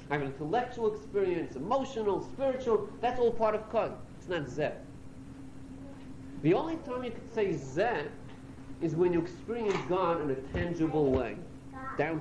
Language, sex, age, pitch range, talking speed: English, male, 50-69, 135-215 Hz, 155 wpm